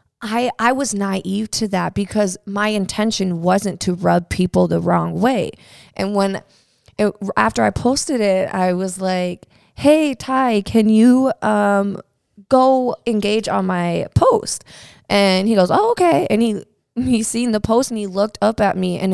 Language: English